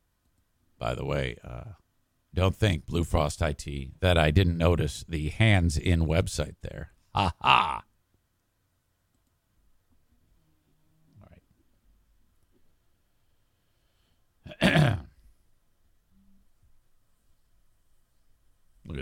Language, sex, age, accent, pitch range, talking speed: English, male, 50-69, American, 85-115 Hz, 65 wpm